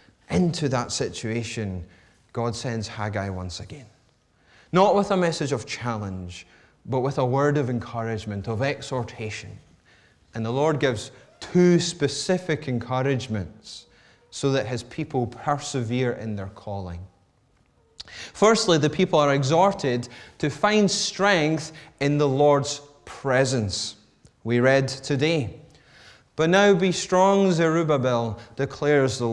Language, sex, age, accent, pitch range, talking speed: English, male, 30-49, British, 110-155 Hz, 120 wpm